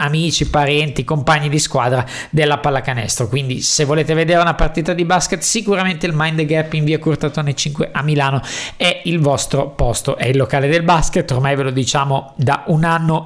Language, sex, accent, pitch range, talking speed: Italian, male, native, 130-155 Hz, 185 wpm